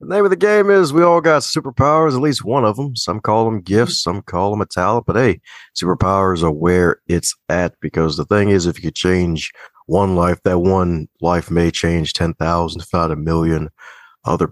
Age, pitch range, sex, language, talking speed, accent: 50-69, 85-105 Hz, male, English, 205 wpm, American